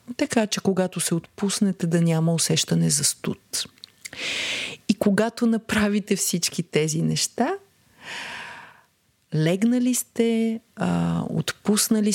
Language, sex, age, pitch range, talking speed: Bulgarian, female, 40-59, 130-215 Hz, 95 wpm